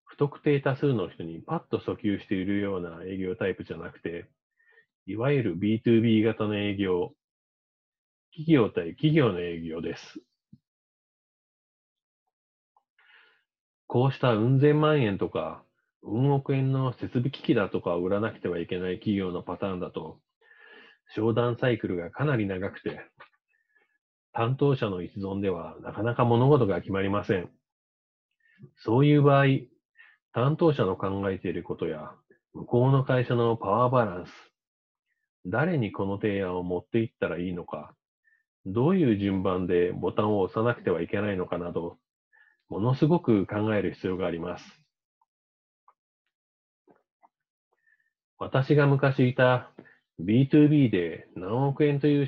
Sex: male